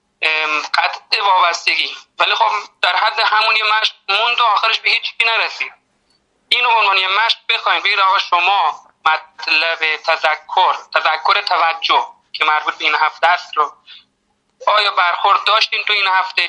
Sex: male